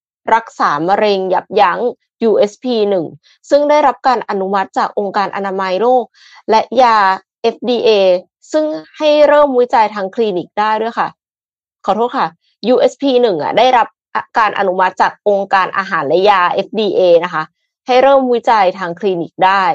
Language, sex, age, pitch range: Thai, female, 20-39, 190-255 Hz